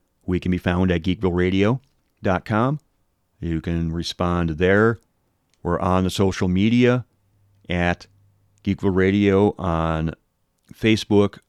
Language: English